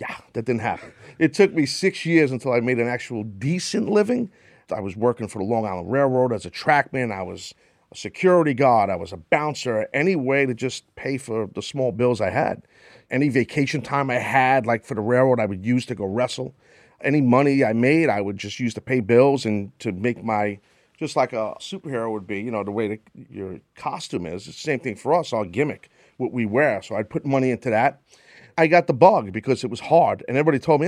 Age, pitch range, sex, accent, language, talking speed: 40-59, 110-150 Hz, male, American, English, 235 wpm